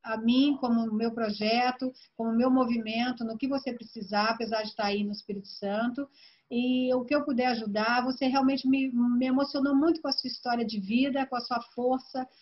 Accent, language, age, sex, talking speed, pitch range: Brazilian, Portuguese, 40-59, female, 200 wpm, 235-275 Hz